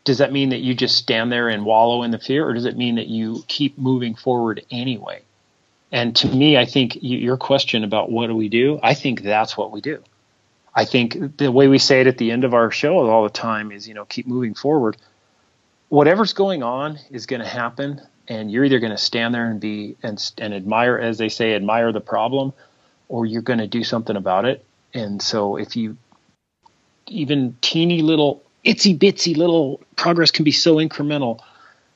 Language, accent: English, American